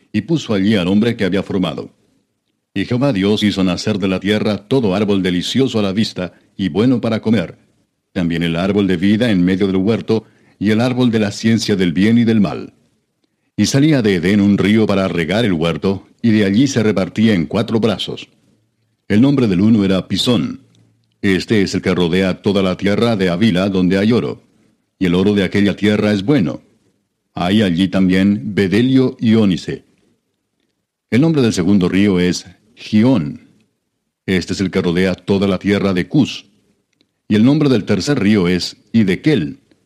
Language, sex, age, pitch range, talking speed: Spanish, male, 60-79, 95-110 Hz, 185 wpm